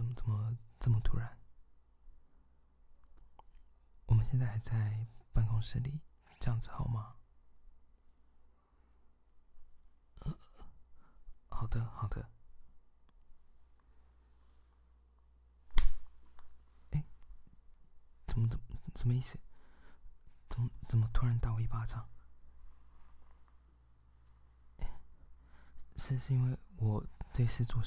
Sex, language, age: male, Chinese, 20-39